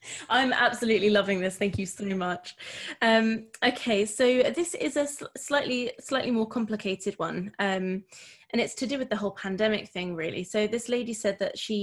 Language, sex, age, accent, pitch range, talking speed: English, female, 20-39, British, 180-215 Hz, 185 wpm